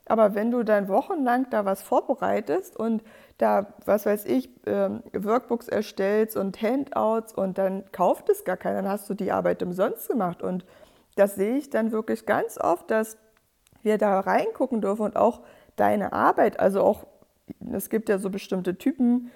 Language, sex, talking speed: German, female, 170 wpm